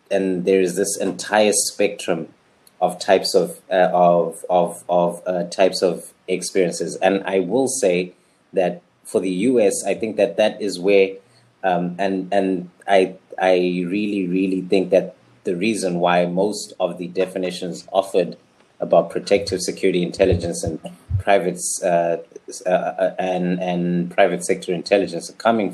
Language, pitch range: English, 90-100 Hz